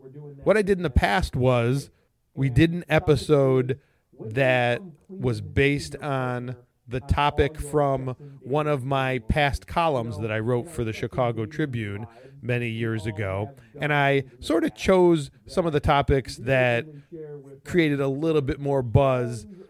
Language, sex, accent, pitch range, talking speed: English, male, American, 125-150 Hz, 150 wpm